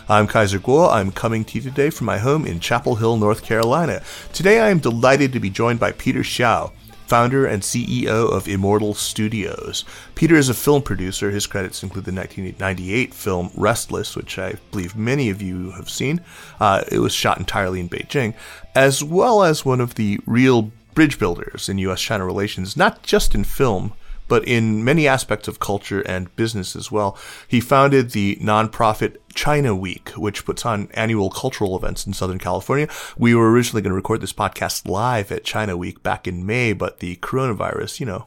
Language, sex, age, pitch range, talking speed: English, male, 30-49, 100-130 Hz, 190 wpm